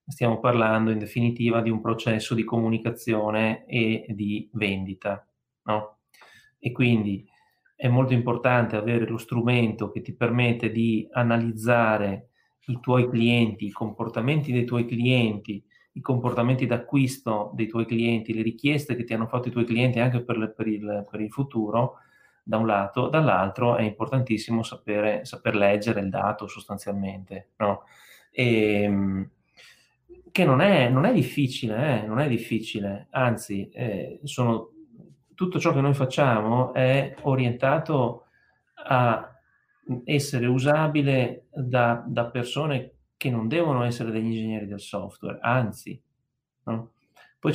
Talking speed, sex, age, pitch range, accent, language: 135 wpm, male, 30-49, 110-125 Hz, native, Italian